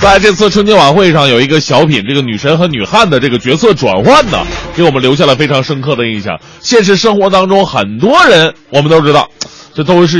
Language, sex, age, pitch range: Chinese, male, 30-49, 150-225 Hz